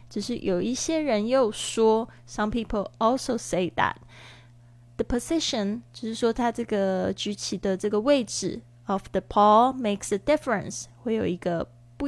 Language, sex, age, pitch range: Chinese, female, 20-39, 175-225 Hz